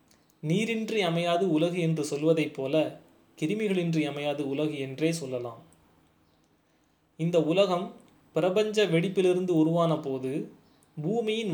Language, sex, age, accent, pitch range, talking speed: Tamil, male, 20-39, native, 150-185 Hz, 90 wpm